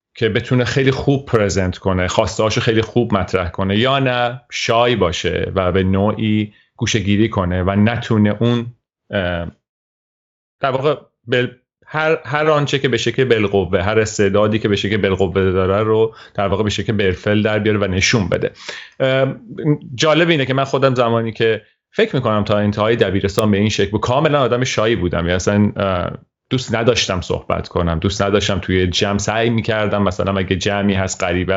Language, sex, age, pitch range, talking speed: Persian, male, 30-49, 95-125 Hz, 165 wpm